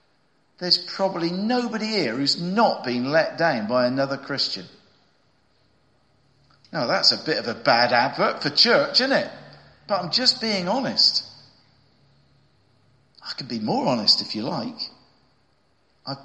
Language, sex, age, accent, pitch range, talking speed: English, male, 50-69, British, 120-160 Hz, 140 wpm